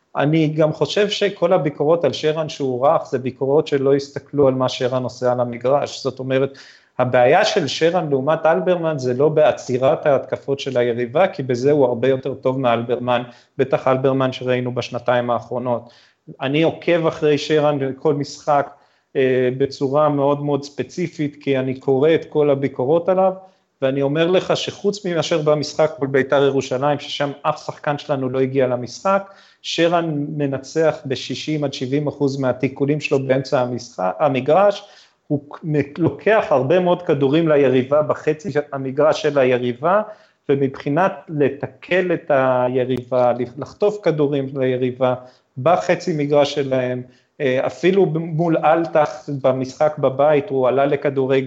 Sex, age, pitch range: male, 30-49, 130-155 Hz